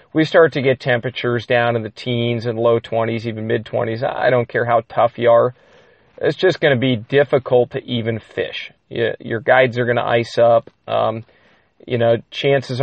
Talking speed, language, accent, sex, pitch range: 190 wpm, English, American, male, 115-130 Hz